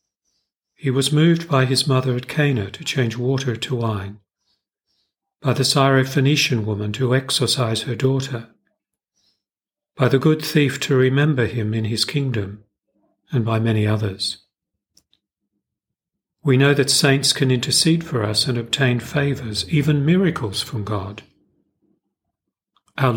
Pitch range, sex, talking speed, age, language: 110-140 Hz, male, 130 wpm, 40-59, English